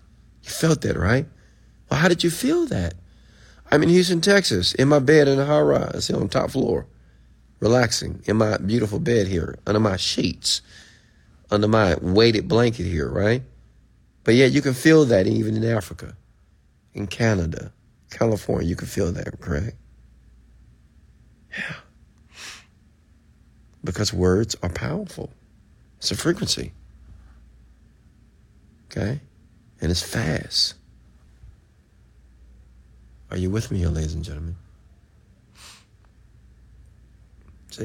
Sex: male